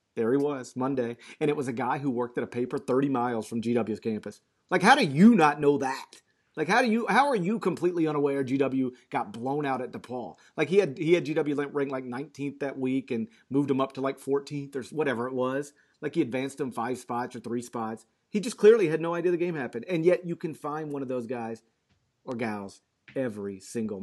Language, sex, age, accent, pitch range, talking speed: English, male, 40-59, American, 115-140 Hz, 235 wpm